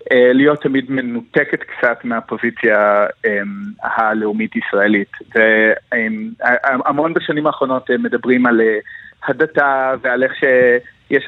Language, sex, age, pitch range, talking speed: Hebrew, male, 30-49, 115-150 Hz, 85 wpm